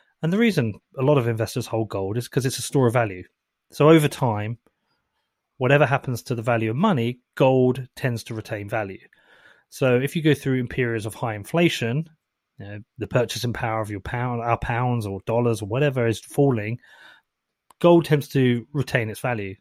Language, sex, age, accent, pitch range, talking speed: English, male, 30-49, British, 115-155 Hz, 195 wpm